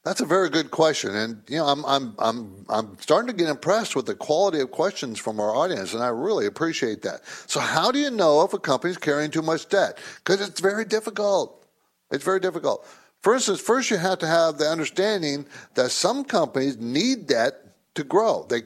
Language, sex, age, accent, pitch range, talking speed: English, male, 60-79, American, 150-215 Hz, 205 wpm